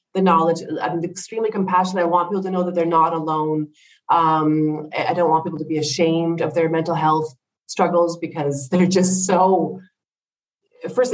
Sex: female